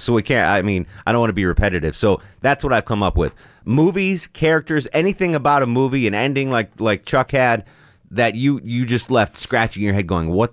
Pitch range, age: 95-130 Hz, 30-49